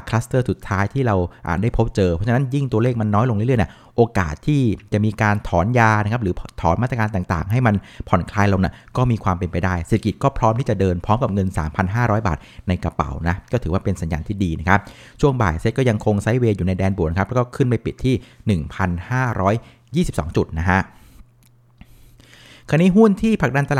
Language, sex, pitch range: Thai, male, 100-130 Hz